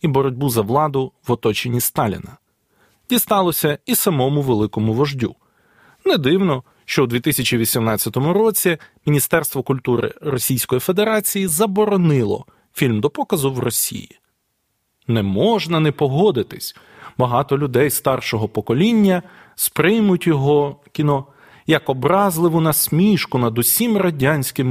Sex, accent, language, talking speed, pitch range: male, native, Ukrainian, 110 wpm, 120-175 Hz